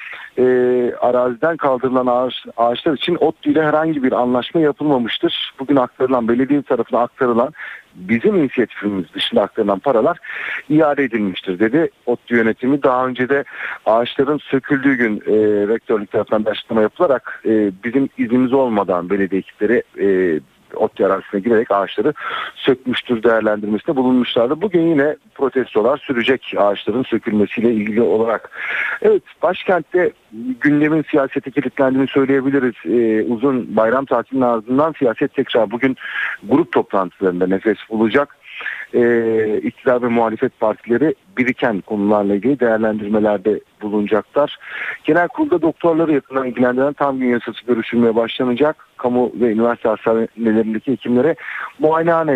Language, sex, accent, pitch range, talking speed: Turkish, male, native, 115-140 Hz, 115 wpm